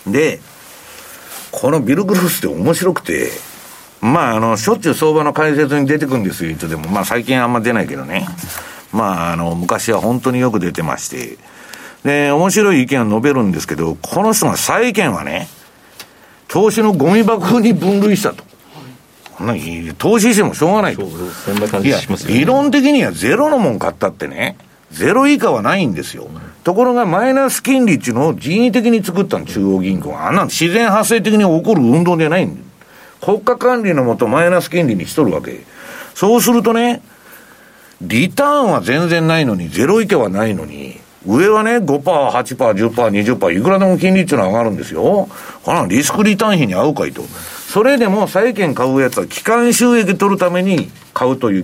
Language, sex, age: Japanese, male, 60-79